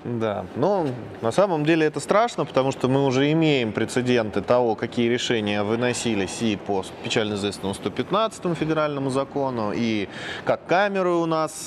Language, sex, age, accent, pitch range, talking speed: Russian, male, 20-39, native, 125-175 Hz, 150 wpm